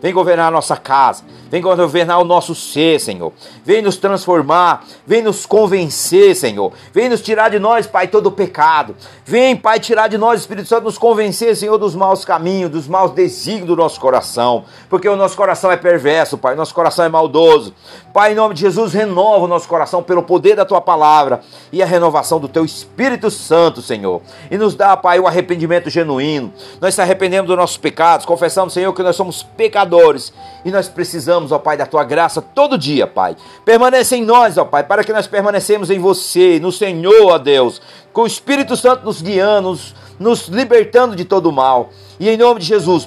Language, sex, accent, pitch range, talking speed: Portuguese, male, Brazilian, 165-210 Hz, 195 wpm